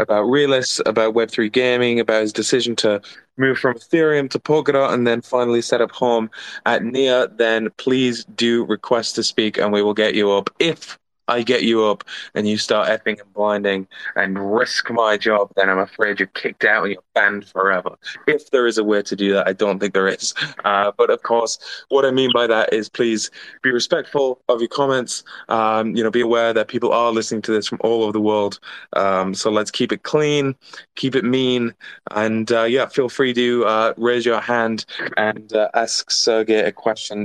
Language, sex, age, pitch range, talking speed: English, male, 20-39, 110-125 Hz, 210 wpm